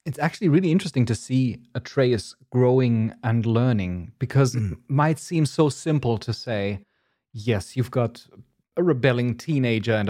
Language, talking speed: English, 150 wpm